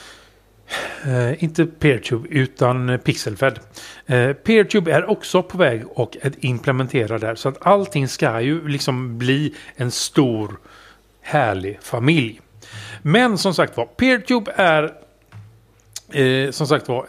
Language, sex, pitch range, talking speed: Swedish, male, 125-170 Hz, 125 wpm